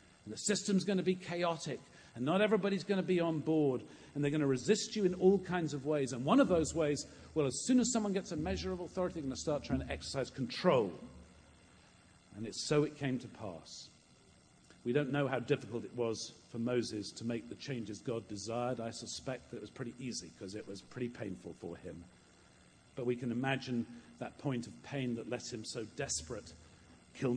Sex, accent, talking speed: male, British, 215 wpm